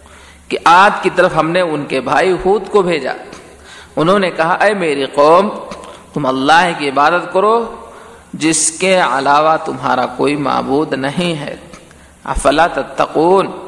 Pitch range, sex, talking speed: 130-170 Hz, male, 145 wpm